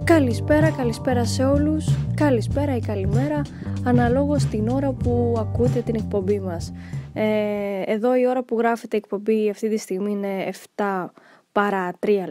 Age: 10-29